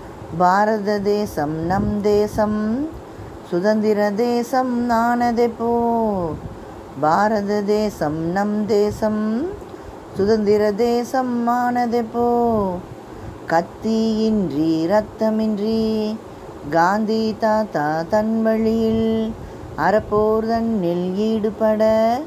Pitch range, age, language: 200-230 Hz, 20-39, Tamil